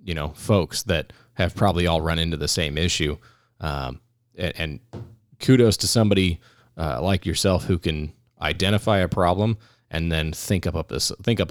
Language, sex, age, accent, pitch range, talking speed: English, male, 20-39, American, 85-110 Hz, 170 wpm